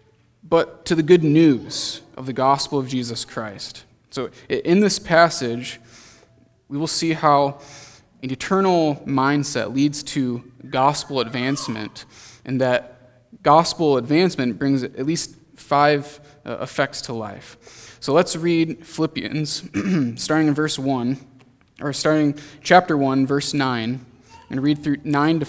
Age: 20-39